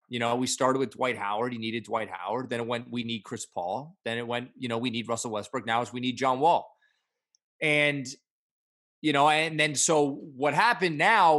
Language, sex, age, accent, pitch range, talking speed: English, male, 30-49, American, 115-145 Hz, 215 wpm